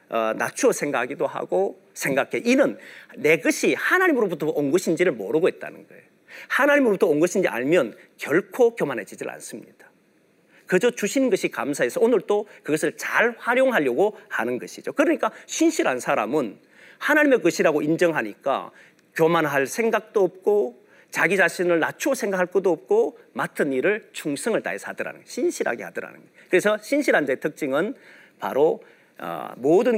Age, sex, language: 40-59, male, Korean